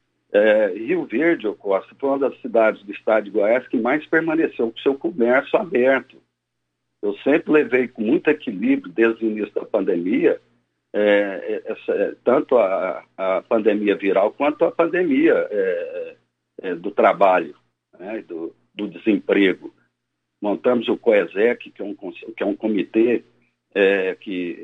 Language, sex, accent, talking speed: Portuguese, male, Brazilian, 150 wpm